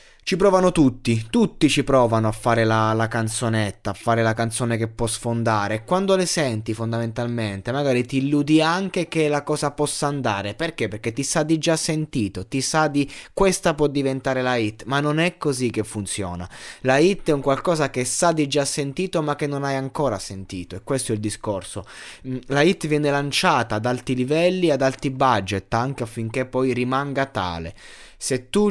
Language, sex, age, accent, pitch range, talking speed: Italian, male, 20-39, native, 115-150 Hz, 190 wpm